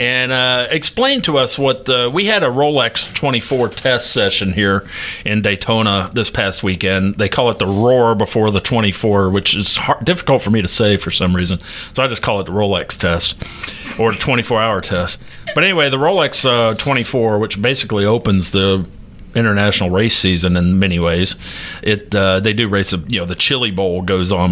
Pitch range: 95-120 Hz